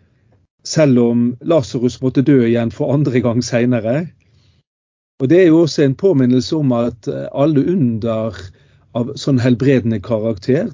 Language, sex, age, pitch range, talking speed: English, male, 40-59, 115-135 Hz, 140 wpm